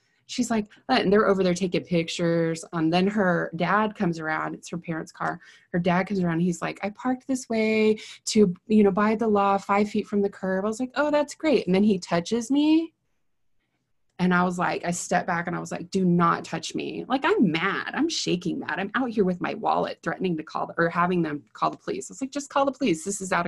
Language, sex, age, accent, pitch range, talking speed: English, female, 20-39, American, 165-215 Hz, 255 wpm